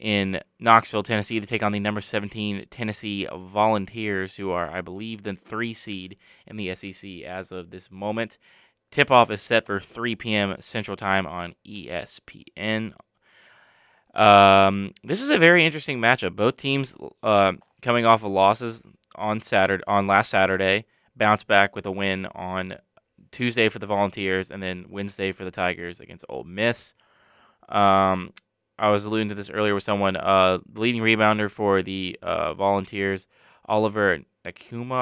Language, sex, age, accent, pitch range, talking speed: English, male, 20-39, American, 95-110 Hz, 160 wpm